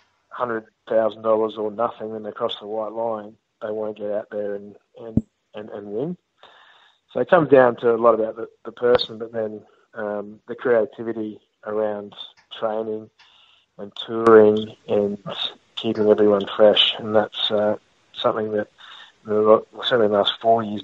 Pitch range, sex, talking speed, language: 105-110 Hz, male, 165 wpm, English